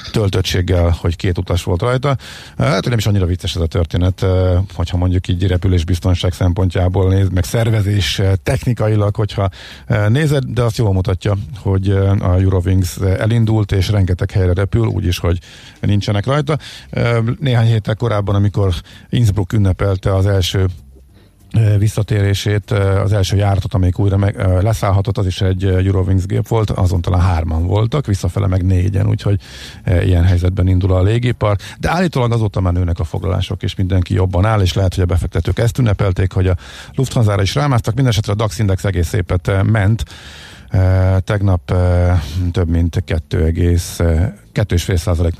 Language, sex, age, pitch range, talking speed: Hungarian, male, 50-69, 90-105 Hz, 150 wpm